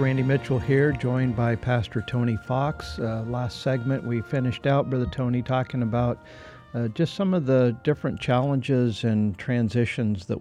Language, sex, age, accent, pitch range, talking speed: English, male, 50-69, American, 100-125 Hz, 160 wpm